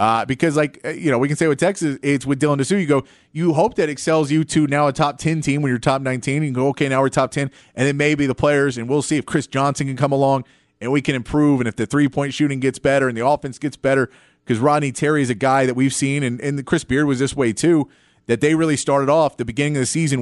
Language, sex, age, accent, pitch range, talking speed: English, male, 30-49, American, 125-150 Hz, 275 wpm